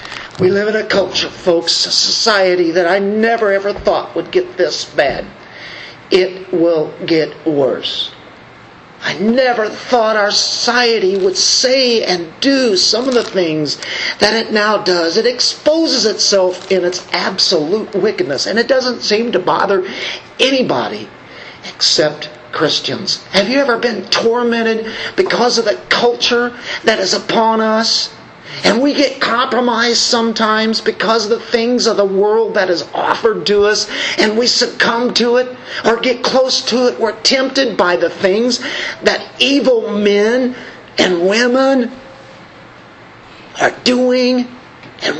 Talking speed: 140 wpm